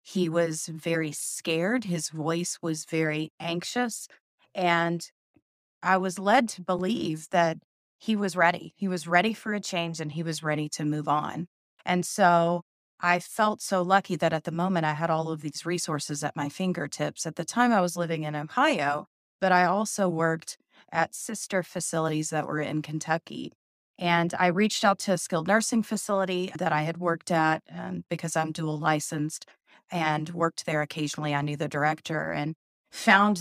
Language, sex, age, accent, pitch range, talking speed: English, female, 30-49, American, 160-185 Hz, 175 wpm